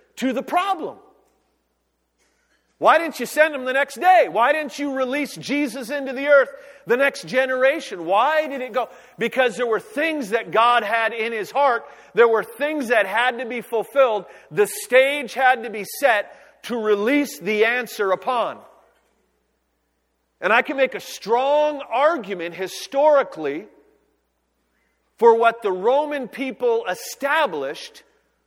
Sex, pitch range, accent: male, 215-290 Hz, American